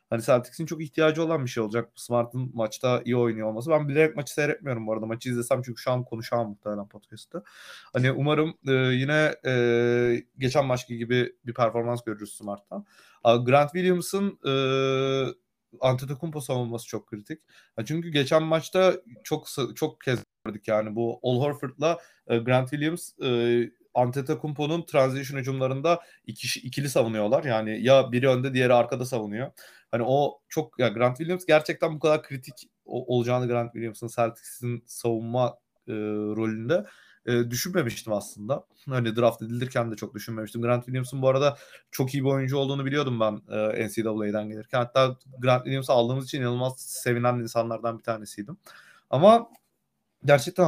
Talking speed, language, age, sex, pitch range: 145 wpm, Turkish, 30-49, male, 115-145 Hz